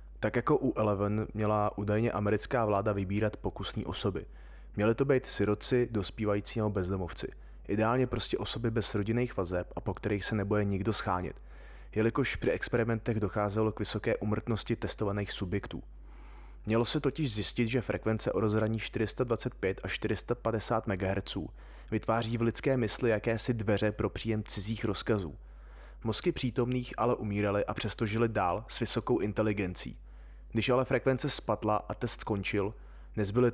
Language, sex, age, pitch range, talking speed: Czech, male, 20-39, 100-115 Hz, 145 wpm